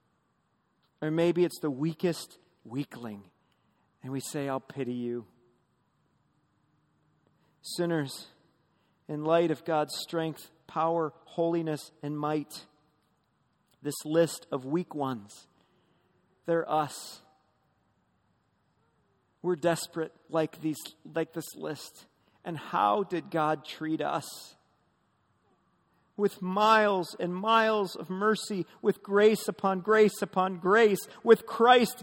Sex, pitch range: male, 165-235 Hz